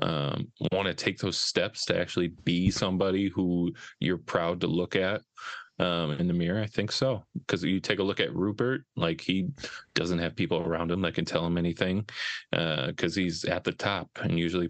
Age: 20-39